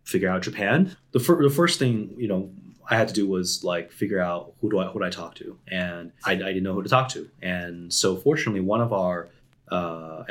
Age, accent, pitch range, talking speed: 30-49, American, 90-110 Hz, 240 wpm